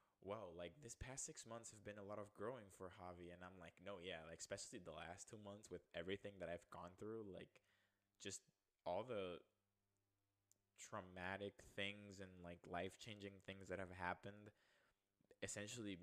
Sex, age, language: male, 20-39, English